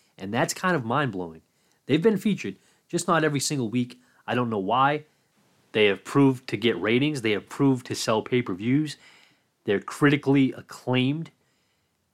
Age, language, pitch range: 30-49, English, 115-150 Hz